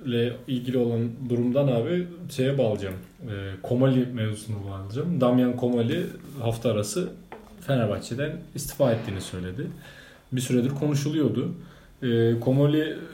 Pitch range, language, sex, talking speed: 115-140 Hz, Turkish, male, 90 wpm